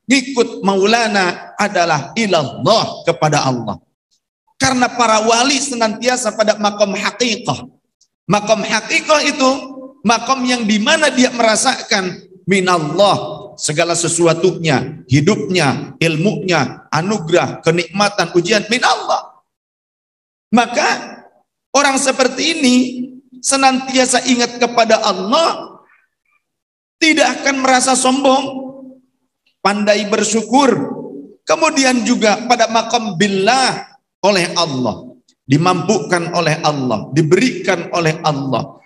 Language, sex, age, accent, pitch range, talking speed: Indonesian, male, 50-69, native, 175-245 Hz, 90 wpm